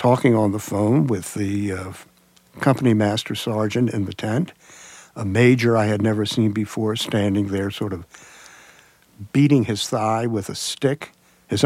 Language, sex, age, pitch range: English, male, 60-79, 100-125 Hz